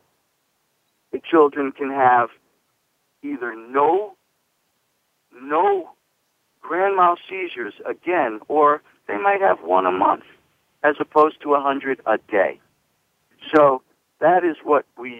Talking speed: 110 wpm